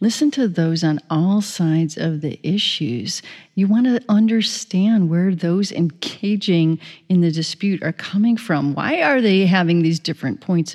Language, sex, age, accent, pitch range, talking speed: English, female, 40-59, American, 170-235 Hz, 160 wpm